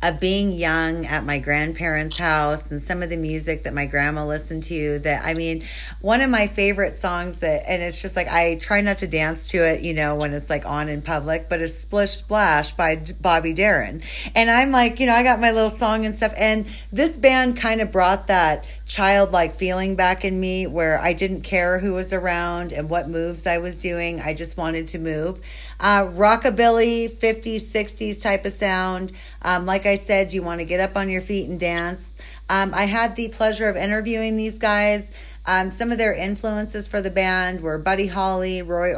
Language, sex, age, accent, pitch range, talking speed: English, female, 40-59, American, 165-200 Hz, 210 wpm